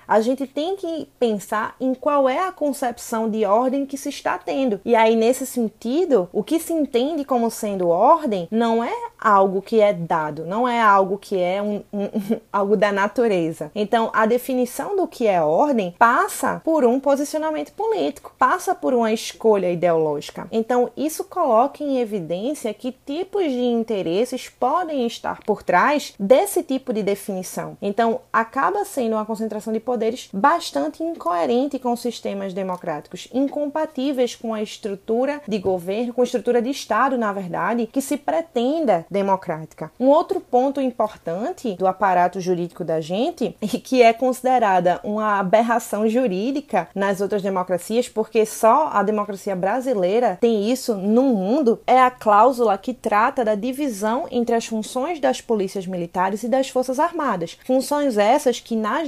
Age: 20-39